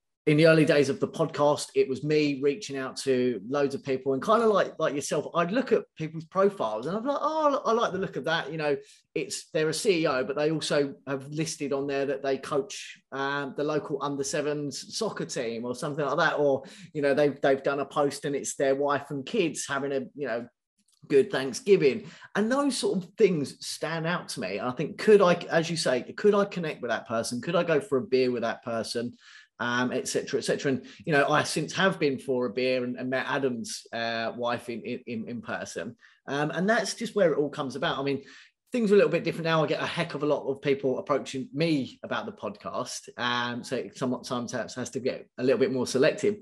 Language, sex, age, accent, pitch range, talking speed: English, male, 20-39, British, 135-170 Hz, 240 wpm